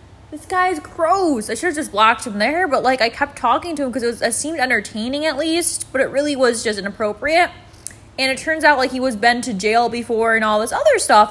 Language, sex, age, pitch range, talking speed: English, female, 20-39, 220-285 Hz, 245 wpm